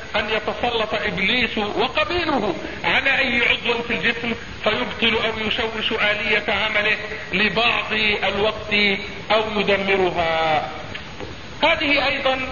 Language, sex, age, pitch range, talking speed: Arabic, male, 50-69, 215-275 Hz, 95 wpm